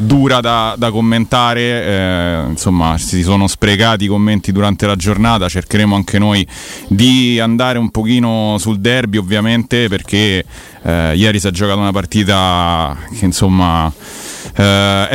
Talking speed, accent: 140 wpm, native